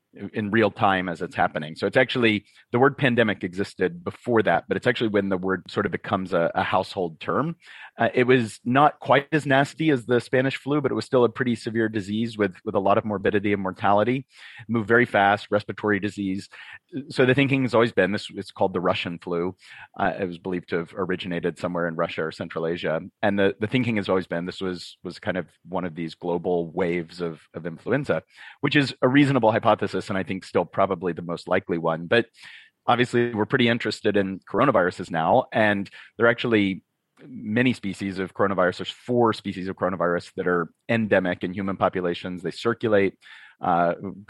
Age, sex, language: 30-49, male, English